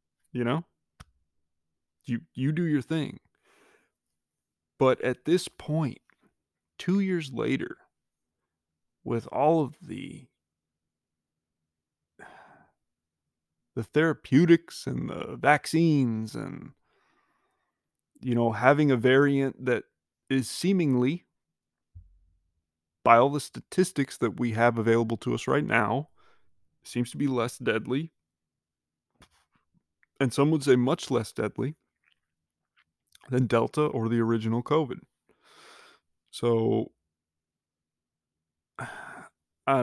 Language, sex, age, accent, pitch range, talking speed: English, male, 30-49, American, 80-135 Hz, 95 wpm